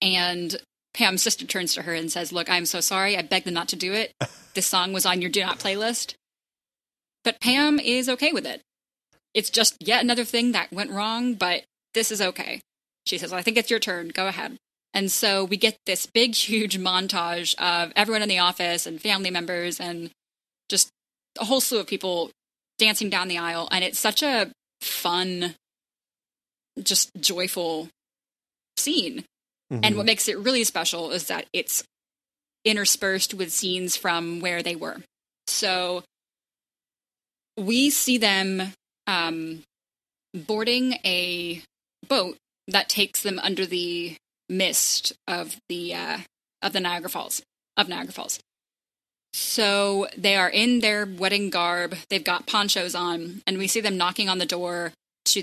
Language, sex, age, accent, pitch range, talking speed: English, female, 10-29, American, 175-220 Hz, 160 wpm